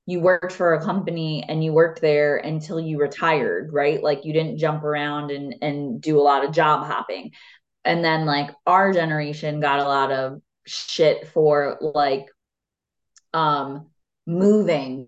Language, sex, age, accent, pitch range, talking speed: English, female, 20-39, American, 145-170 Hz, 160 wpm